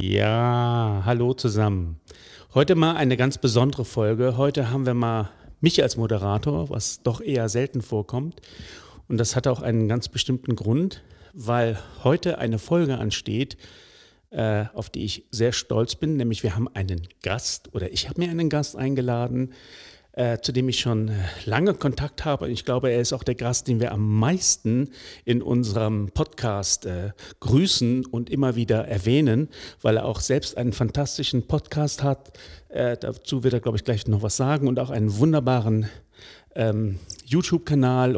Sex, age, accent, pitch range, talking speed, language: male, 40-59, German, 110-135 Hz, 165 wpm, German